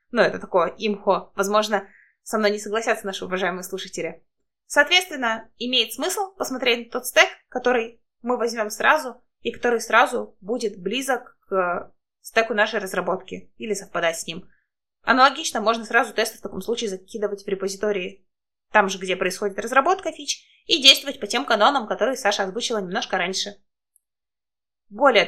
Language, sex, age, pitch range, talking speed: Russian, female, 20-39, 200-250 Hz, 150 wpm